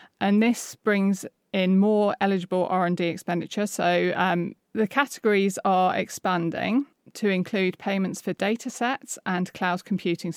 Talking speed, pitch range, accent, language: 125 wpm, 175-210 Hz, British, English